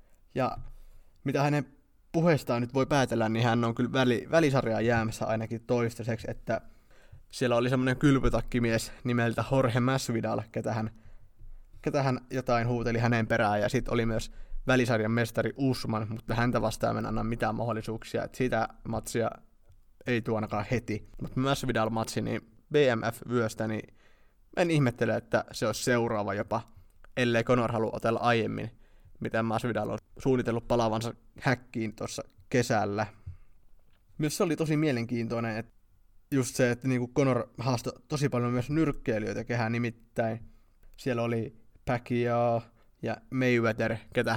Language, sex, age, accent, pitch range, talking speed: Finnish, male, 20-39, native, 110-125 Hz, 135 wpm